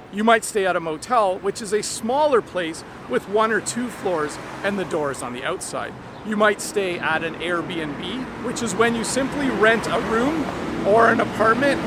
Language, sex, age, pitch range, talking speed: English, male, 40-59, 165-225 Hz, 195 wpm